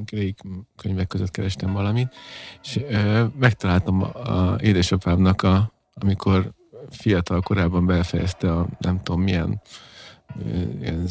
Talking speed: 95 wpm